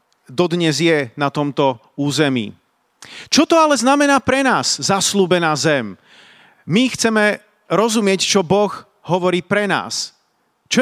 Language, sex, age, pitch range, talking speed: Slovak, male, 40-59, 155-195 Hz, 120 wpm